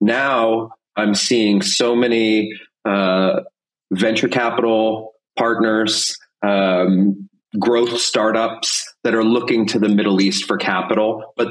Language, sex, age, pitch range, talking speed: English, male, 30-49, 105-120 Hz, 115 wpm